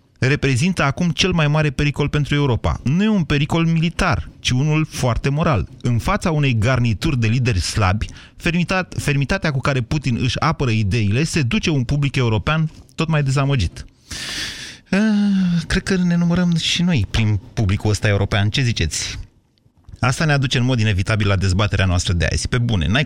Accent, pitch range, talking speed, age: native, 110-150 Hz, 170 wpm, 30-49